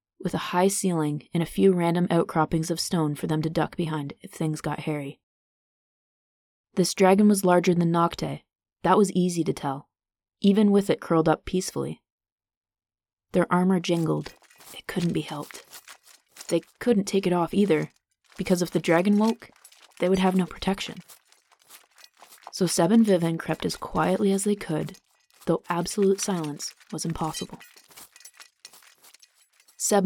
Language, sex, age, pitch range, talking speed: English, female, 20-39, 155-190 Hz, 150 wpm